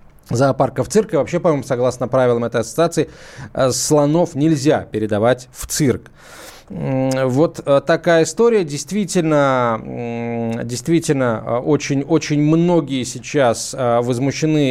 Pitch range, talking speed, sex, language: 130-165 Hz, 100 wpm, male, Russian